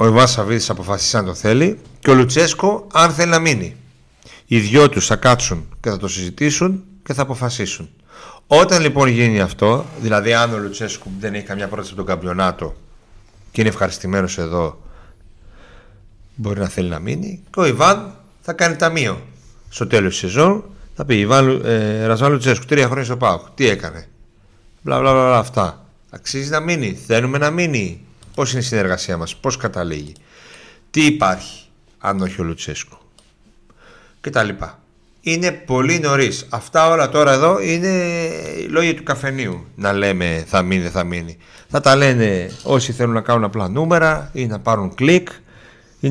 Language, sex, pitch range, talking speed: Greek, male, 95-145 Hz, 160 wpm